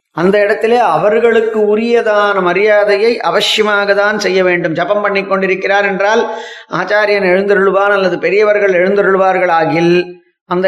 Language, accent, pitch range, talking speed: Tamil, native, 170-205 Hz, 110 wpm